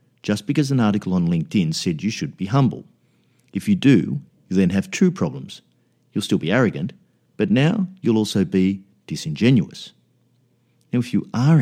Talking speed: 170 wpm